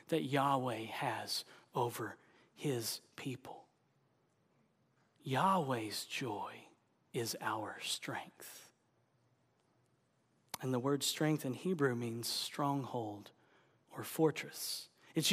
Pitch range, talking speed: 150-210 Hz, 85 wpm